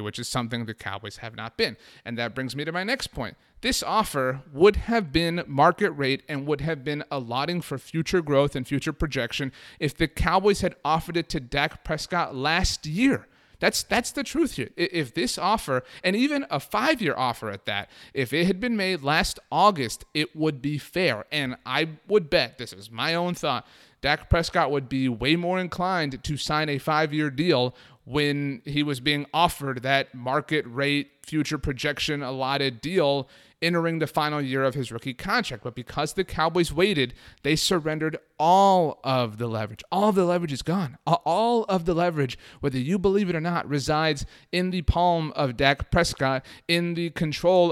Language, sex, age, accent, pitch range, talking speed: English, male, 30-49, American, 130-170 Hz, 185 wpm